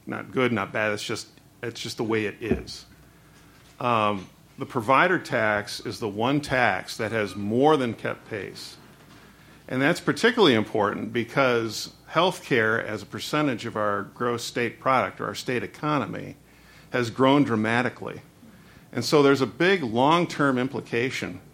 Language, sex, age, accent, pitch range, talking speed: English, male, 50-69, American, 115-145 Hz, 155 wpm